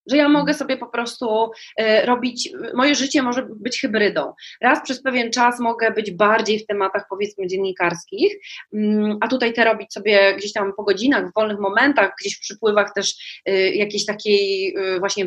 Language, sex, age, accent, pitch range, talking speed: Polish, female, 20-39, native, 205-270 Hz, 165 wpm